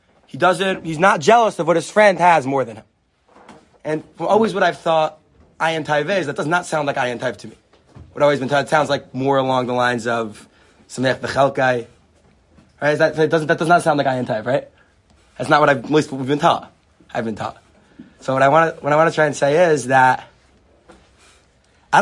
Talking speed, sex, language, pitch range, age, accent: 235 wpm, male, English, 130-170 Hz, 20-39, American